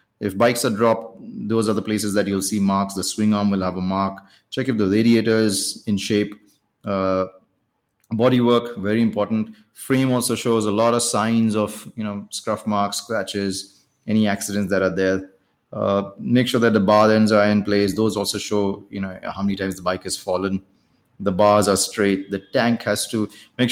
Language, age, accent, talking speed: English, 30-49, Indian, 200 wpm